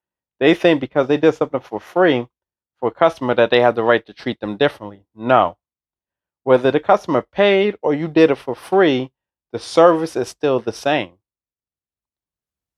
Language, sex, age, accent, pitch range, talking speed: English, male, 30-49, American, 115-150 Hz, 180 wpm